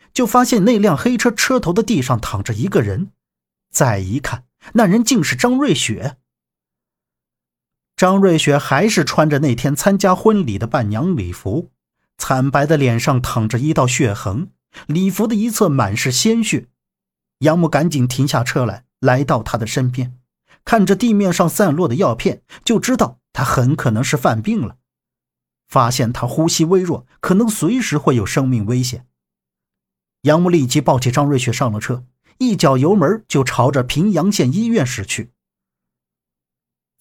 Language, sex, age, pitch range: Chinese, male, 50-69, 125-185 Hz